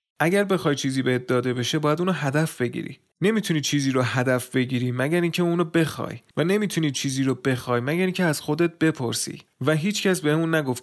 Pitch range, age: 125-160 Hz, 30-49